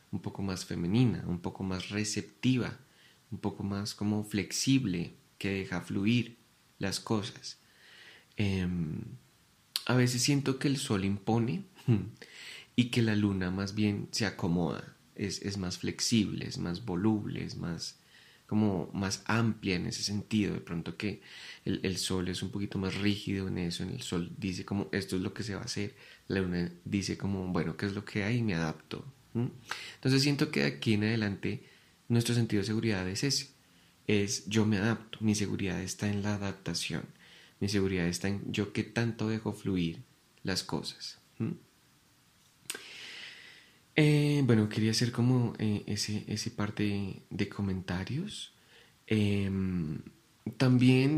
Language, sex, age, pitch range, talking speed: Spanish, male, 20-39, 95-115 Hz, 155 wpm